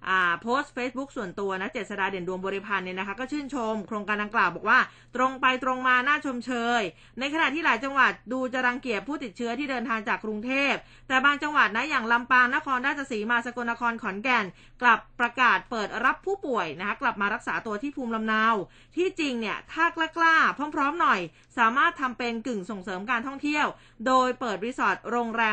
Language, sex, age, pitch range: Thai, female, 20-39, 210-270 Hz